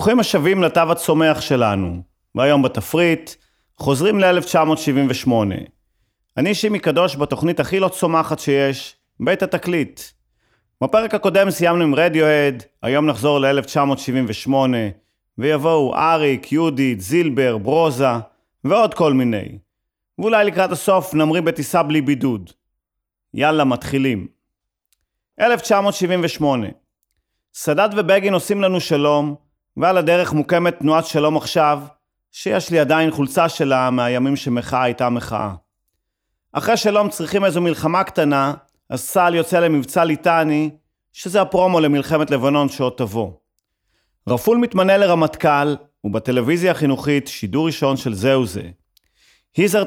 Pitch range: 125-170 Hz